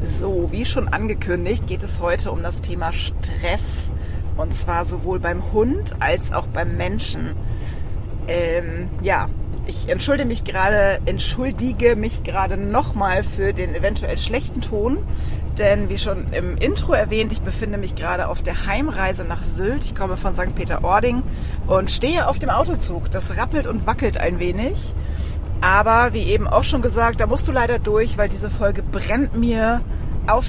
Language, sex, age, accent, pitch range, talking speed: German, female, 30-49, German, 75-95 Hz, 165 wpm